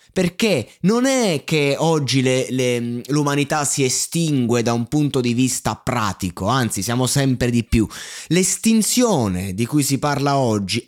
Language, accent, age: Italian, native, 20-39